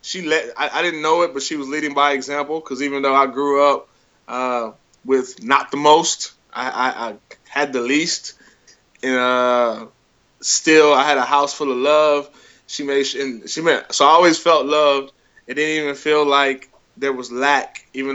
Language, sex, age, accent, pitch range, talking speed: English, male, 20-39, American, 130-150 Hz, 195 wpm